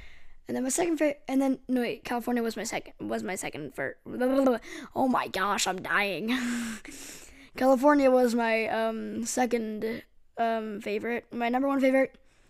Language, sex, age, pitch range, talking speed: English, female, 10-29, 225-290 Hz, 160 wpm